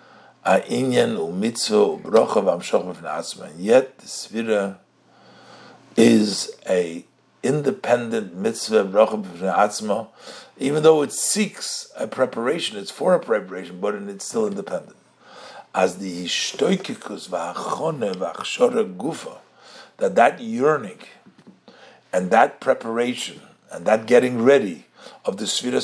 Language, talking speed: English, 95 wpm